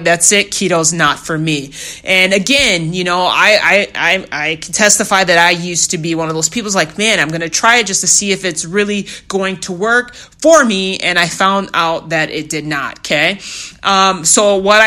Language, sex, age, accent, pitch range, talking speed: English, male, 30-49, American, 175-205 Hz, 220 wpm